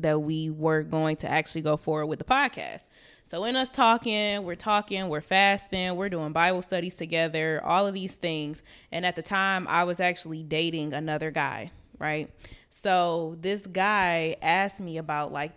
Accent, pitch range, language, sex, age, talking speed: American, 160-195 Hz, English, female, 20-39, 175 wpm